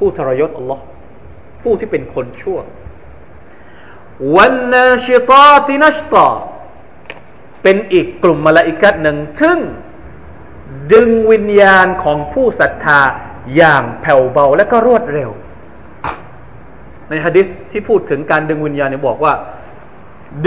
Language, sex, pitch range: Thai, male, 155-230 Hz